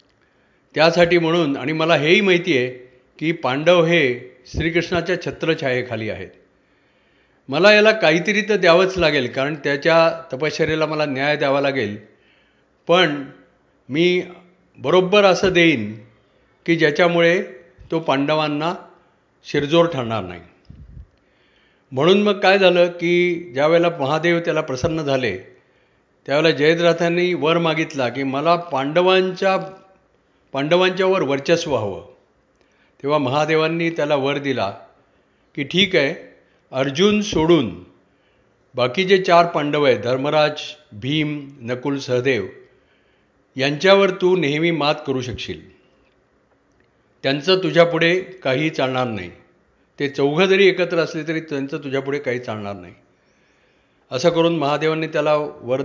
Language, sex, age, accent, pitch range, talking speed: Marathi, male, 50-69, native, 135-175 Hz, 100 wpm